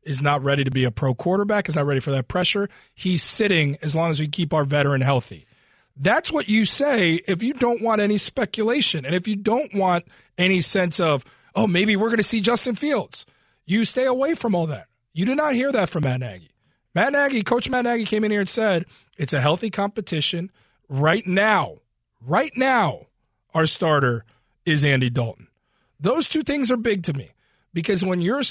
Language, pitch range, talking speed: English, 145-220 Hz, 205 wpm